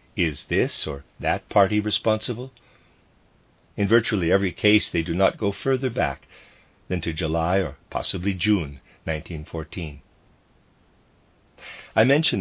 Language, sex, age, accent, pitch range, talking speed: English, male, 50-69, American, 85-110 Hz, 120 wpm